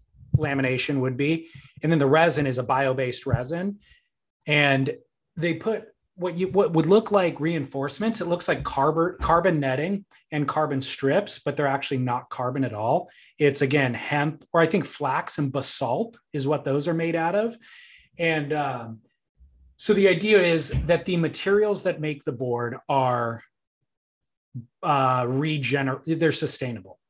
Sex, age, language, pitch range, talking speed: male, 30-49, English, 130-165 Hz, 155 wpm